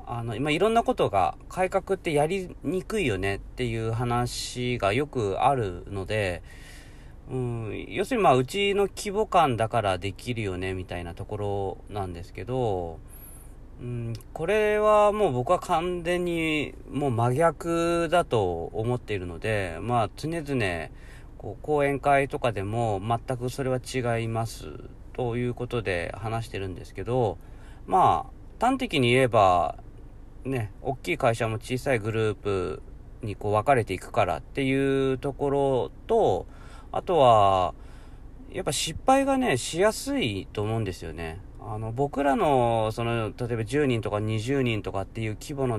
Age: 40-59